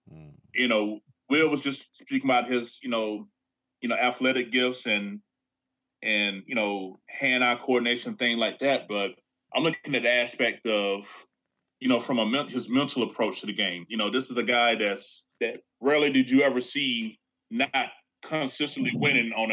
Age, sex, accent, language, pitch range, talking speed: 30-49, male, American, English, 110-140 Hz, 180 wpm